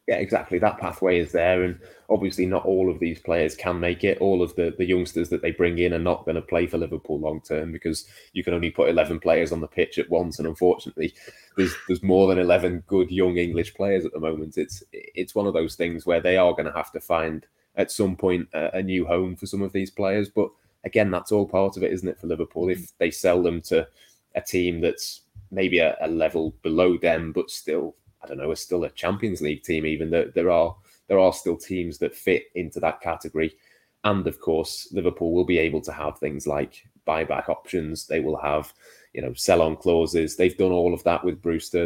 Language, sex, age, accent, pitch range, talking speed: English, male, 20-39, British, 85-95 Hz, 235 wpm